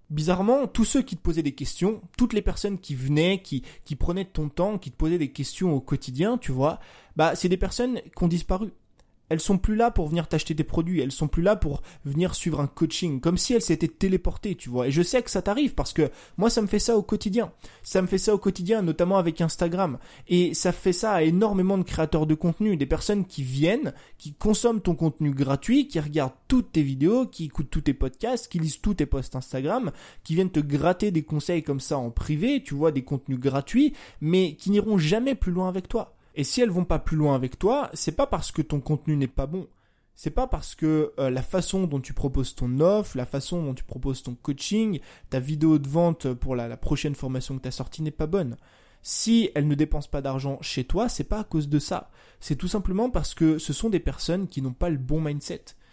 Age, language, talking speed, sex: 20-39, French, 240 wpm, male